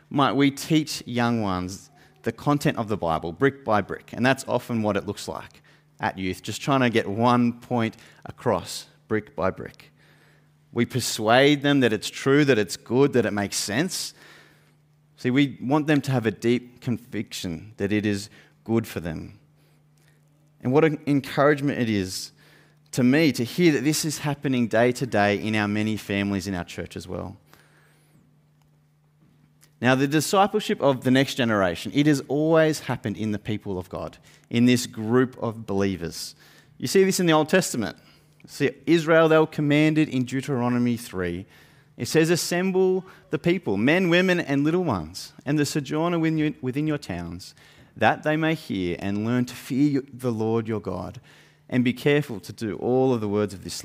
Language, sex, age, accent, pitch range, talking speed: English, male, 30-49, Australian, 110-150 Hz, 180 wpm